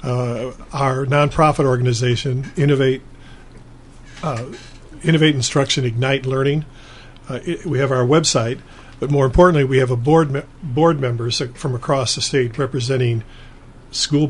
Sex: male